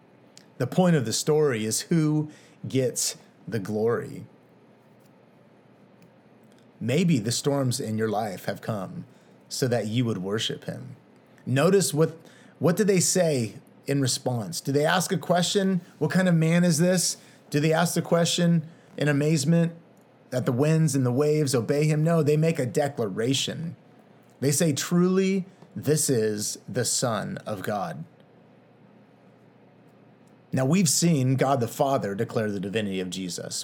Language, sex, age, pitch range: English, male, 30-49, 125-165 Hz